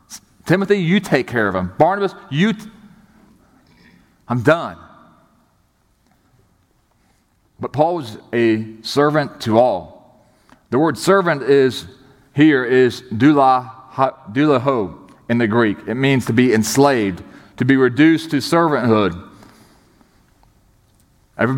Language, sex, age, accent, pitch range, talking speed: English, male, 40-59, American, 125-155 Hz, 110 wpm